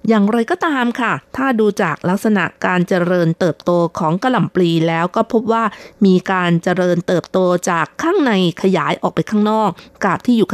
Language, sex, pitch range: Thai, female, 175-225 Hz